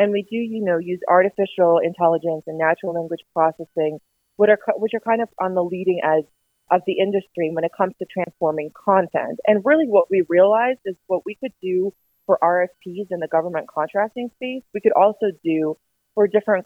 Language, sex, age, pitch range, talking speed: English, female, 30-49, 160-205 Hz, 190 wpm